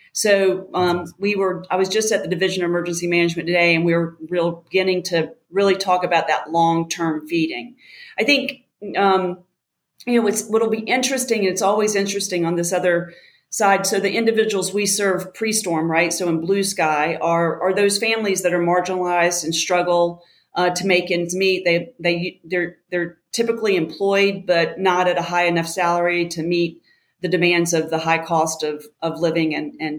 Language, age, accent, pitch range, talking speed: English, 40-59, American, 170-195 Hz, 190 wpm